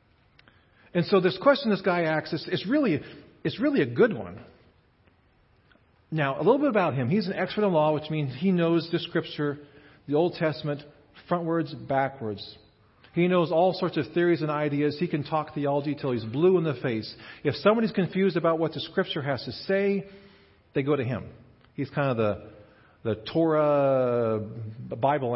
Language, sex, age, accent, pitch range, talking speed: English, male, 40-59, American, 120-165 Hz, 175 wpm